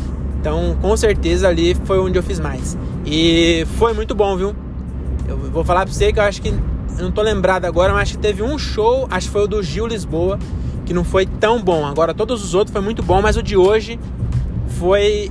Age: 20-39